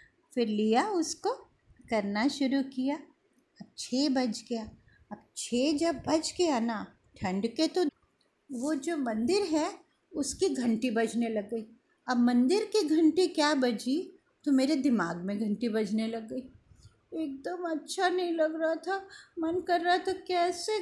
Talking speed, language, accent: 155 wpm, Hindi, native